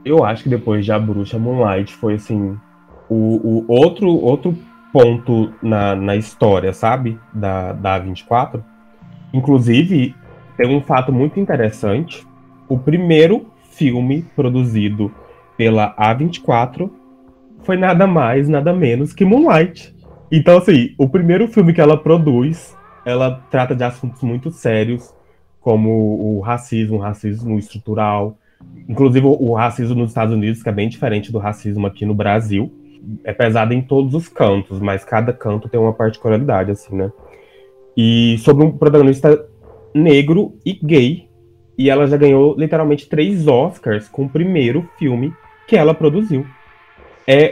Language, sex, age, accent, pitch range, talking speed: Portuguese, male, 20-39, Brazilian, 110-150 Hz, 140 wpm